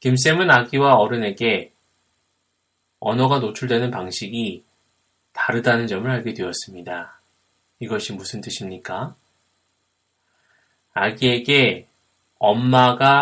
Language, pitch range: Korean, 105-130 Hz